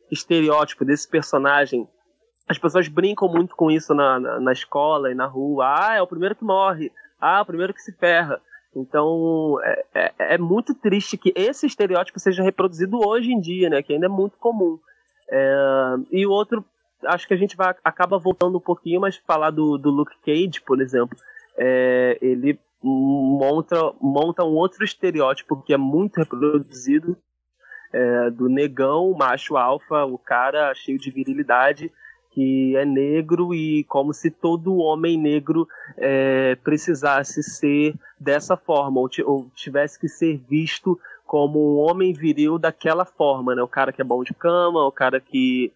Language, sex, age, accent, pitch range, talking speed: Portuguese, male, 20-39, Brazilian, 140-185 Hz, 160 wpm